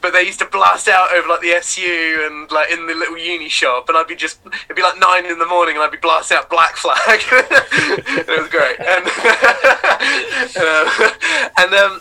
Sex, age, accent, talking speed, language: male, 20-39, British, 215 wpm, English